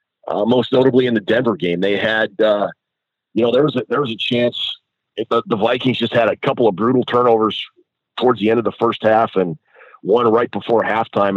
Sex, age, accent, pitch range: male, 40-59, American, 100-125 Hz